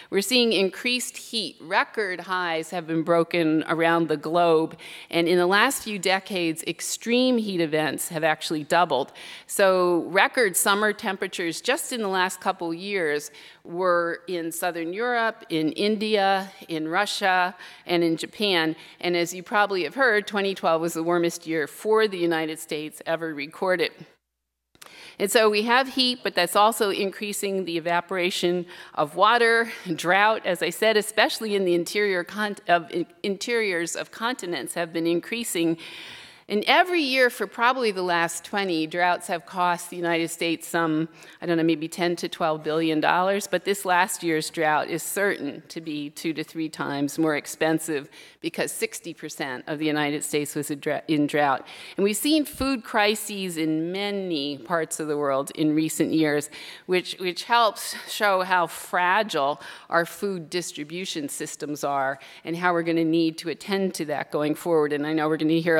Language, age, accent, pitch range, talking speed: English, 50-69, American, 160-200 Hz, 160 wpm